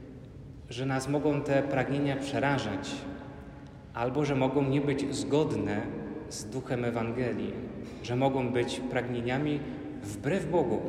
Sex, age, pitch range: male, 30-49, 125-155 Hz